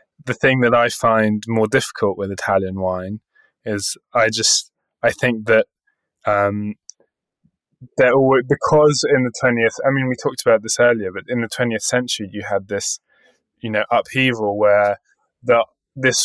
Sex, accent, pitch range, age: male, British, 105-125 Hz, 20-39